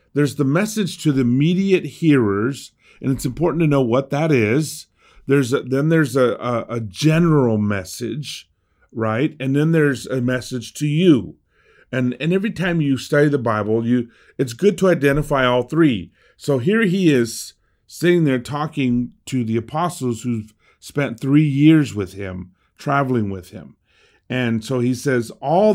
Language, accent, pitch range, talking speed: English, American, 115-150 Hz, 165 wpm